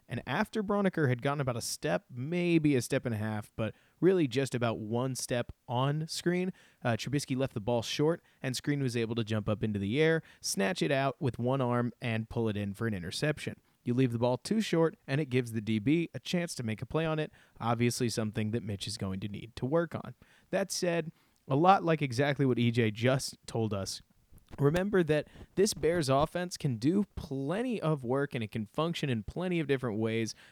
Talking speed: 220 wpm